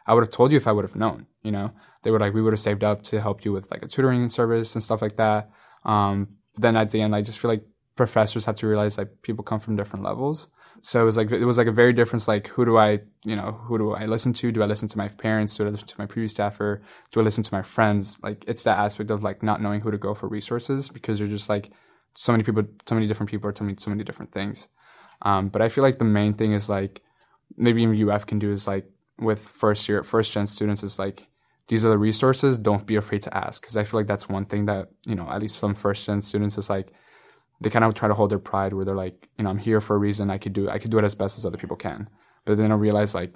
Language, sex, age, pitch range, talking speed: English, male, 10-29, 105-110 Hz, 290 wpm